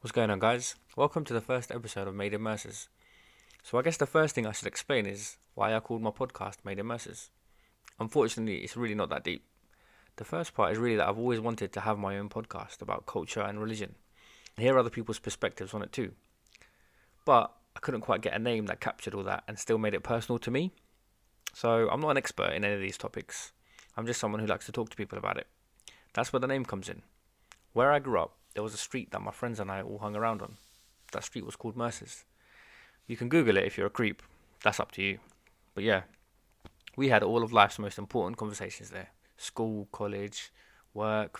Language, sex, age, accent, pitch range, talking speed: English, male, 20-39, British, 100-115 Hz, 225 wpm